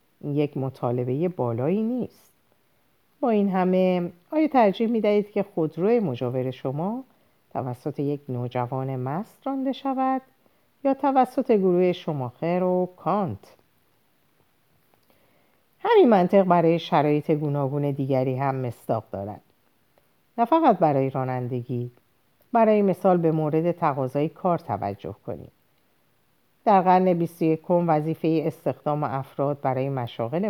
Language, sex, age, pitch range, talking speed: Persian, female, 50-69, 135-195 Hz, 115 wpm